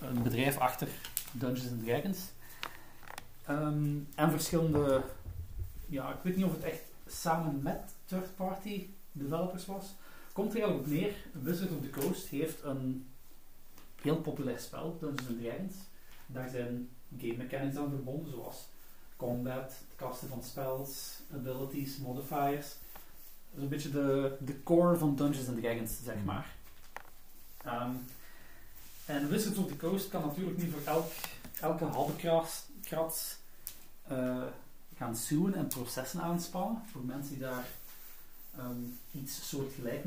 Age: 40-59